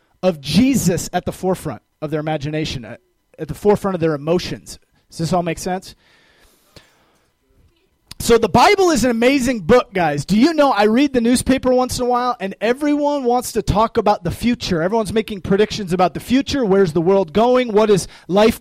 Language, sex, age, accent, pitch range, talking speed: English, male, 30-49, American, 185-250 Hz, 190 wpm